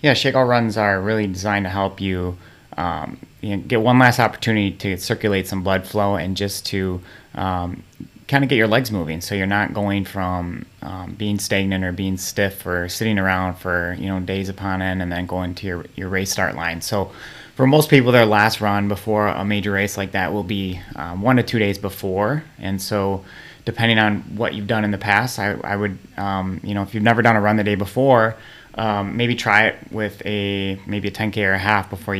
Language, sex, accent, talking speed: English, male, American, 220 wpm